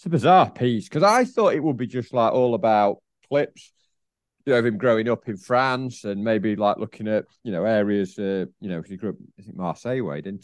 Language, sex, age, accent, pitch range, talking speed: English, male, 40-59, British, 105-145 Hz, 235 wpm